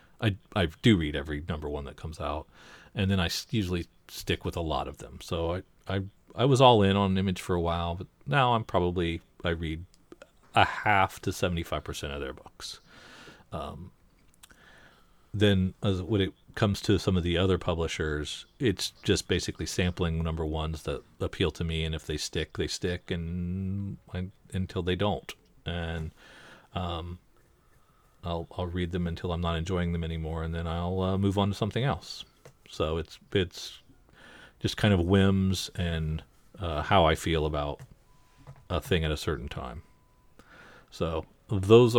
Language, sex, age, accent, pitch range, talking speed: English, male, 40-59, American, 85-105 Hz, 175 wpm